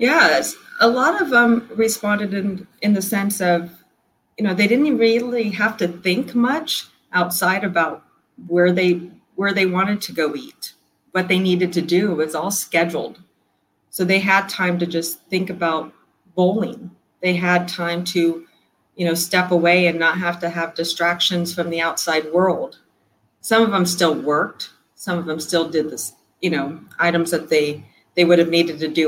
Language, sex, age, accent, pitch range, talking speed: English, female, 40-59, American, 170-200 Hz, 180 wpm